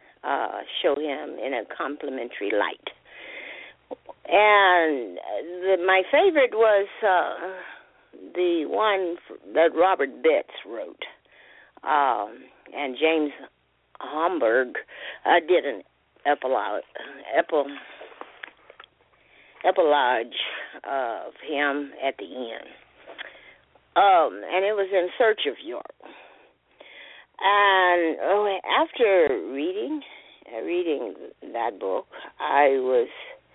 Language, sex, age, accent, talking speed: English, female, 50-69, American, 90 wpm